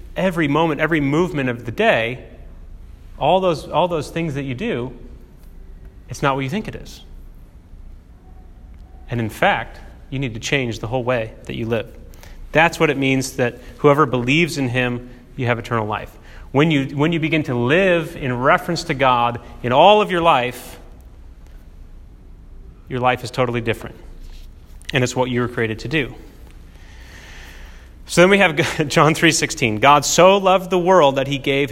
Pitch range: 85-140 Hz